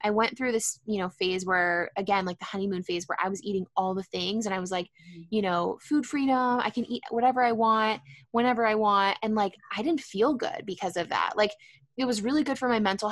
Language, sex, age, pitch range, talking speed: English, female, 10-29, 190-220 Hz, 245 wpm